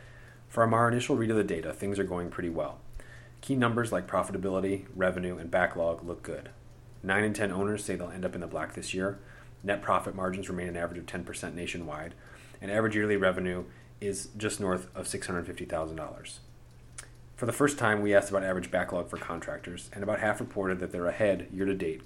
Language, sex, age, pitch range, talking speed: English, male, 30-49, 90-120 Hz, 195 wpm